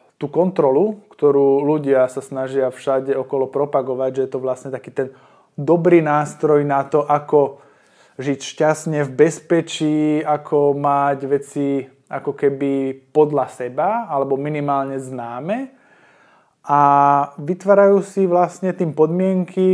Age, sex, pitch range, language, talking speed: 20-39, male, 140-170 Hz, Slovak, 120 wpm